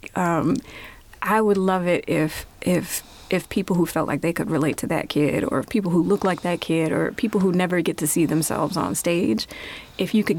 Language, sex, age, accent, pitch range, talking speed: English, female, 30-49, American, 175-225 Hz, 220 wpm